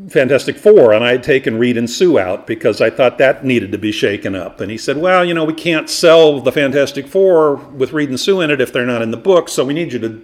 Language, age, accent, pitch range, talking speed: English, 50-69, American, 110-140 Hz, 280 wpm